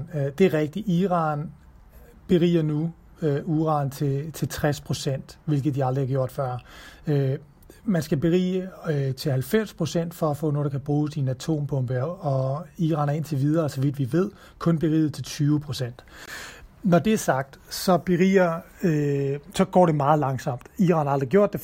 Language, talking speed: Danish, 175 wpm